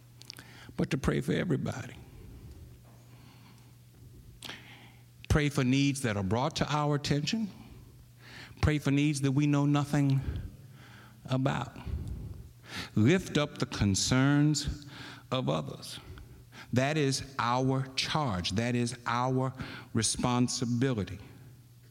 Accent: American